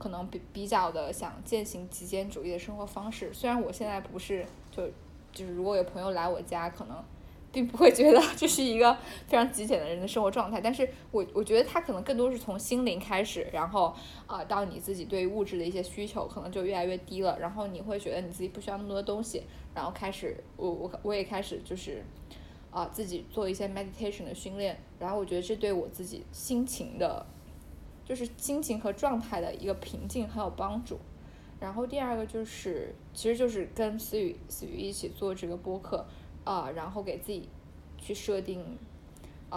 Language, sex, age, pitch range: Chinese, female, 10-29, 180-220 Hz